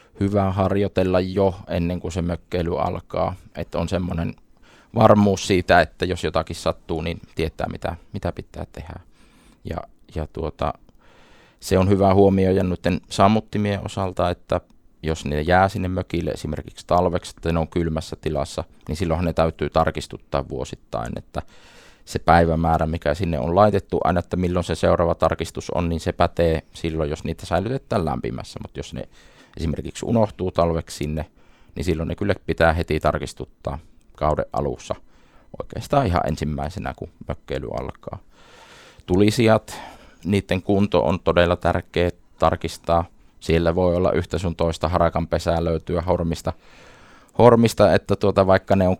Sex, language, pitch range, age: male, Finnish, 80-95 Hz, 20-39